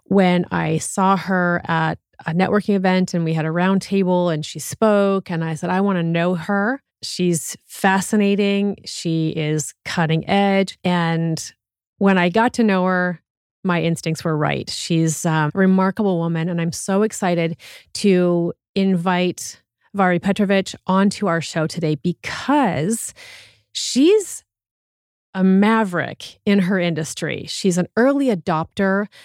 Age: 30-49